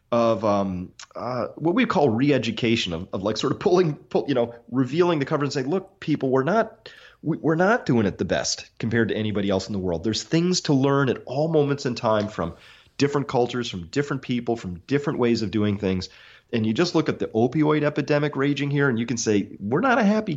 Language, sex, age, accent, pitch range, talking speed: English, male, 30-49, American, 100-140 Hz, 225 wpm